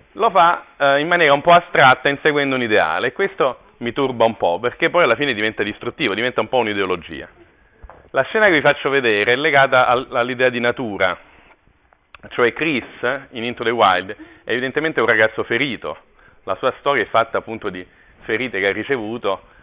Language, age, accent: Italian, 40-59, native